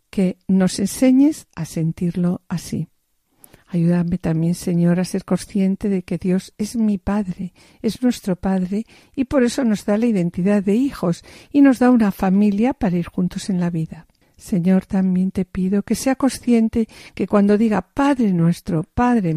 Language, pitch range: Spanish, 175-220 Hz